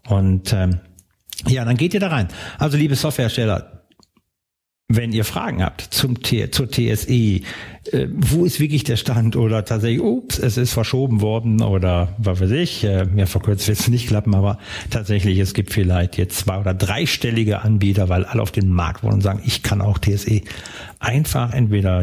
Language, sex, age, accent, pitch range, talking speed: German, male, 60-79, German, 100-130 Hz, 180 wpm